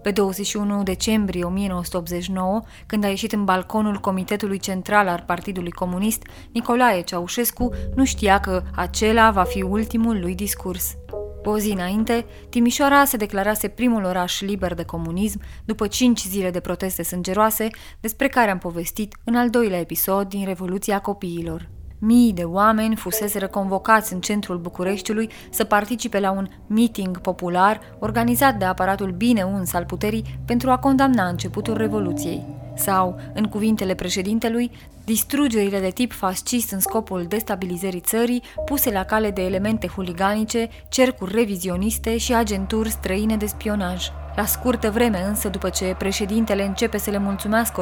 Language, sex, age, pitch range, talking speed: Romanian, female, 20-39, 185-225 Hz, 145 wpm